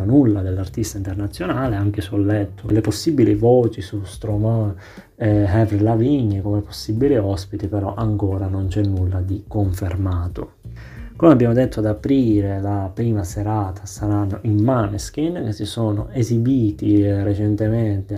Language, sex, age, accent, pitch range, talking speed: Italian, male, 30-49, native, 100-115 Hz, 135 wpm